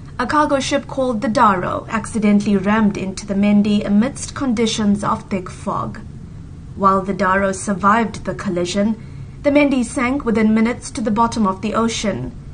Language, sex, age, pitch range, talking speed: English, female, 30-49, 200-250 Hz, 160 wpm